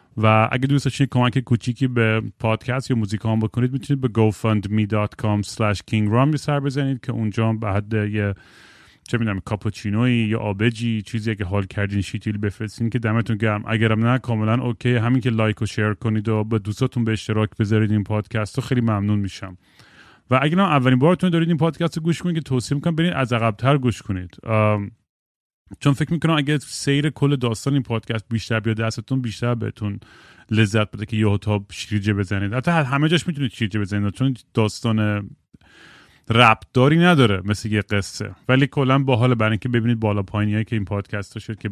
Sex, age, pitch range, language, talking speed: male, 30-49, 105-135 Hz, Persian, 175 wpm